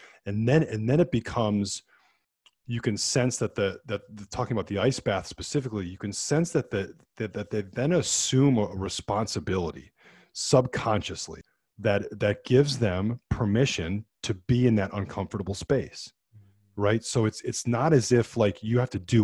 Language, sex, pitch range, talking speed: English, male, 100-130 Hz, 170 wpm